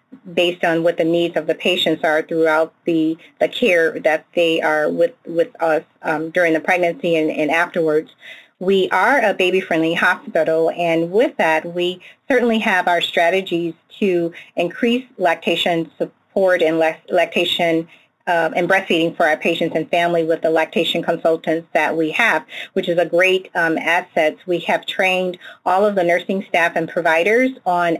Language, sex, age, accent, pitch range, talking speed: English, female, 40-59, American, 165-190 Hz, 165 wpm